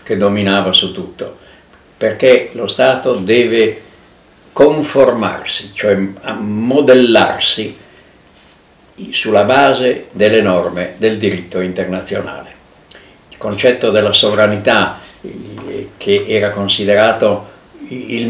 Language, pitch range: Italian, 105-130 Hz